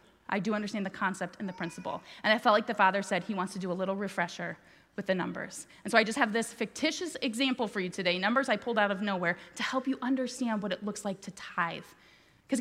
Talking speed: 250 wpm